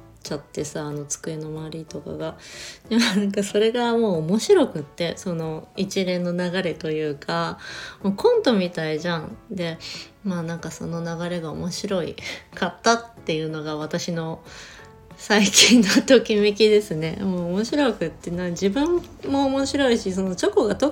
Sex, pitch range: female, 165-225 Hz